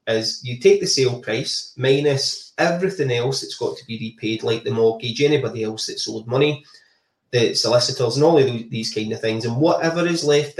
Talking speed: 200 wpm